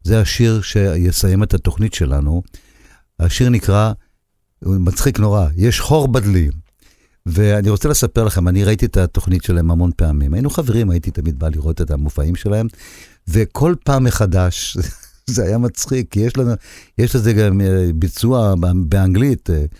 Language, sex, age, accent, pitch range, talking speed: Hebrew, male, 50-69, native, 85-110 Hz, 145 wpm